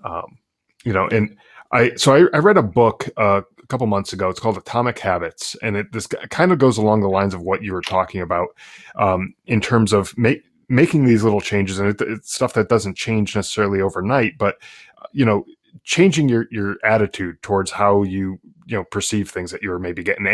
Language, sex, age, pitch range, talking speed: English, male, 20-39, 100-115 Hz, 210 wpm